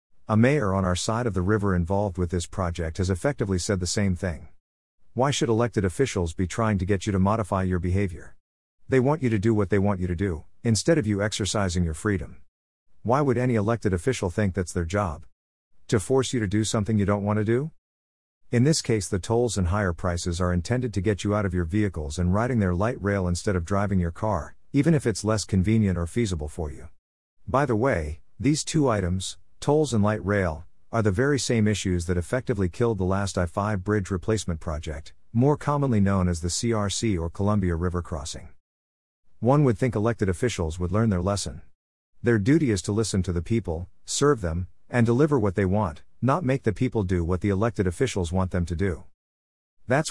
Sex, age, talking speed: male, 50-69, 210 wpm